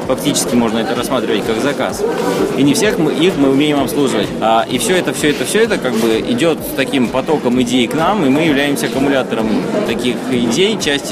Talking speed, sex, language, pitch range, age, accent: 200 wpm, male, Russian, 125-140 Hz, 20-39, native